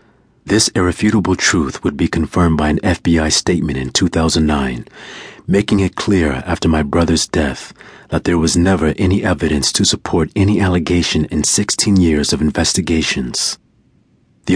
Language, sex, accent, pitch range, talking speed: English, male, American, 75-95 Hz, 145 wpm